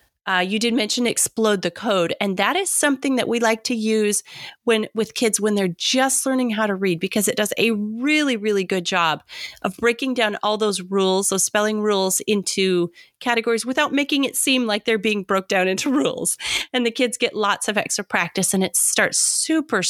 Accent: American